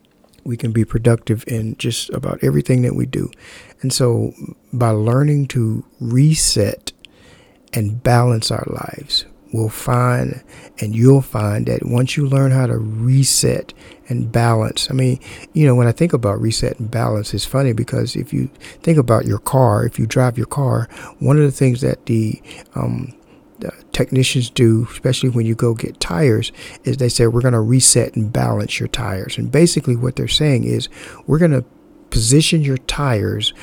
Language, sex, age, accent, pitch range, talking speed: English, male, 50-69, American, 115-130 Hz, 175 wpm